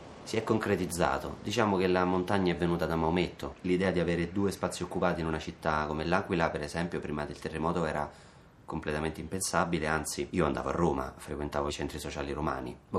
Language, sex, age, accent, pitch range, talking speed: Italian, male, 30-49, native, 75-90 Hz, 190 wpm